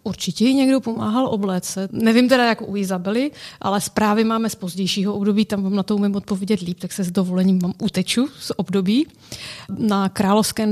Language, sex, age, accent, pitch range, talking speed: Czech, female, 30-49, native, 185-215 Hz, 185 wpm